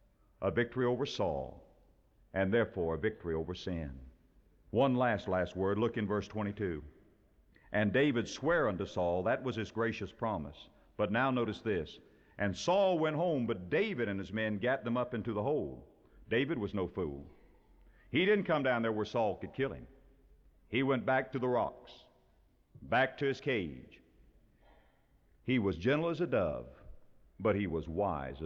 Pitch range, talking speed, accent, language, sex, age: 80-125 Hz, 170 wpm, American, English, male, 50-69